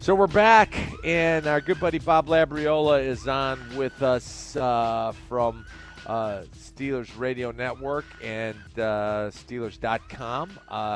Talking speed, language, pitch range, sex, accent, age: 120 wpm, English, 105-150 Hz, male, American, 40-59